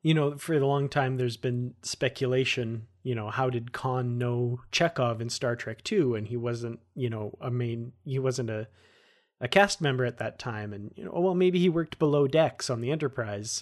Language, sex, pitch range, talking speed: English, male, 120-145 Hz, 210 wpm